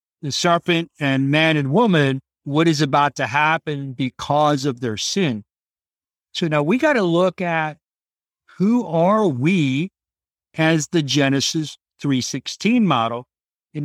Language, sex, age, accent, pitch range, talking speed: English, male, 50-69, American, 145-190 Hz, 135 wpm